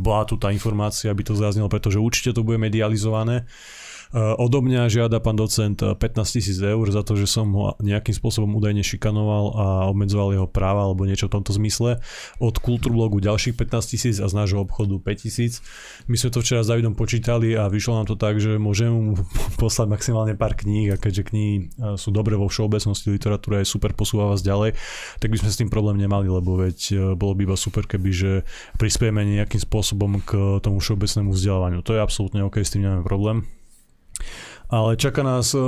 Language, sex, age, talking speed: Slovak, male, 20-39, 190 wpm